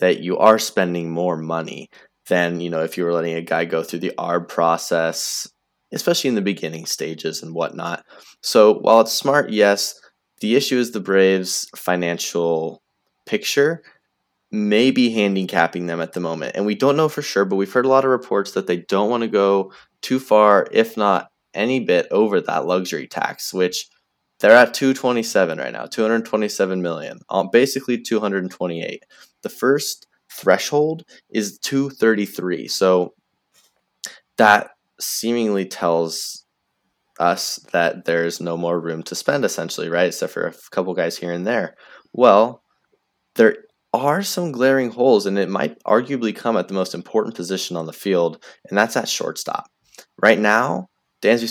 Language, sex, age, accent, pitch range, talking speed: English, male, 20-39, American, 85-120 Hz, 160 wpm